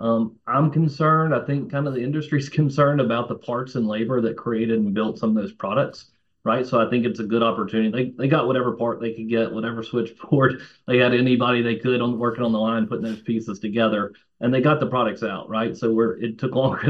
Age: 40-59